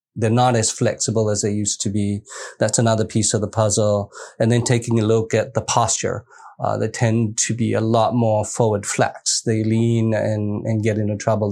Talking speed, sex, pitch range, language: 210 wpm, male, 105-115 Hz, English